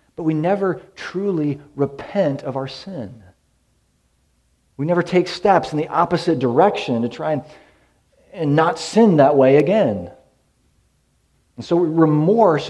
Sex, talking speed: male, 130 wpm